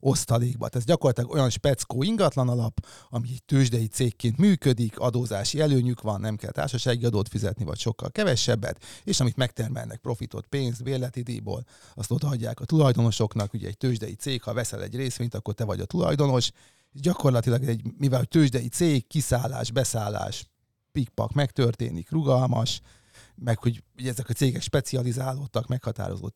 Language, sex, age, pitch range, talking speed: Hungarian, male, 30-49, 110-130 Hz, 145 wpm